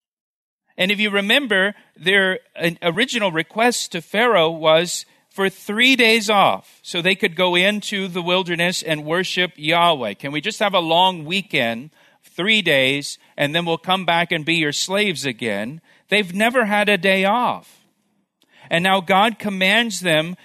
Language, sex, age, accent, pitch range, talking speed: English, male, 40-59, American, 170-210 Hz, 160 wpm